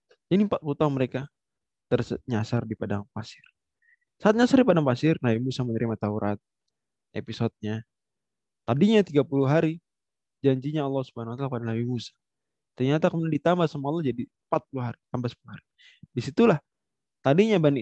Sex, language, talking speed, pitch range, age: male, Indonesian, 140 wpm, 125-175 Hz, 20-39